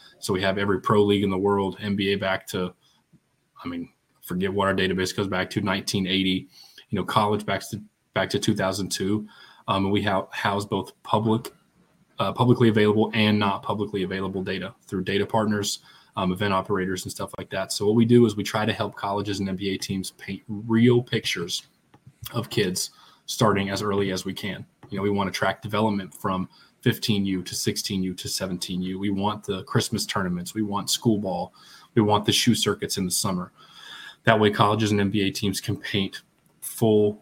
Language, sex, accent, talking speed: English, male, American, 190 wpm